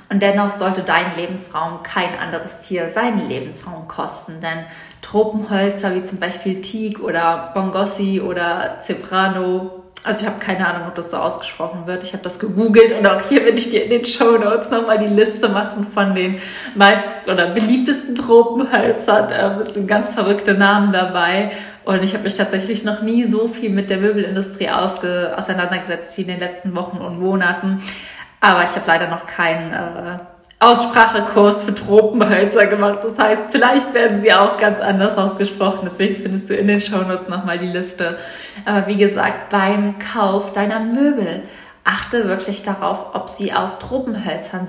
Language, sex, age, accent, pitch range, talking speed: German, female, 20-39, German, 180-215 Hz, 165 wpm